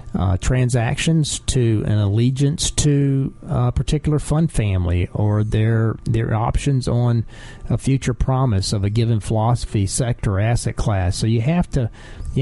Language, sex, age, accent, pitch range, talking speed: English, male, 40-59, American, 105-125 Hz, 145 wpm